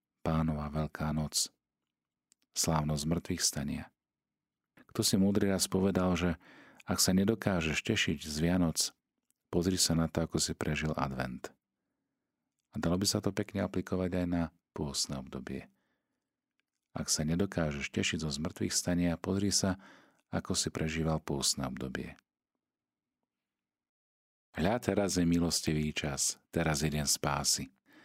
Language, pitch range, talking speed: Slovak, 75-95 Hz, 130 wpm